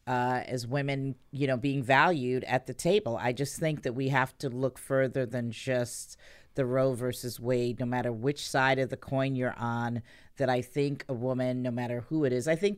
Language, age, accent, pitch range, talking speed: English, 40-59, American, 125-145 Hz, 215 wpm